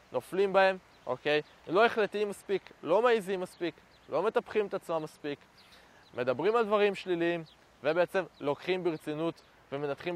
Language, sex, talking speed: Hebrew, male, 130 wpm